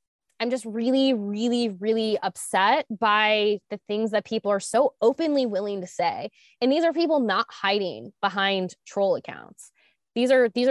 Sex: female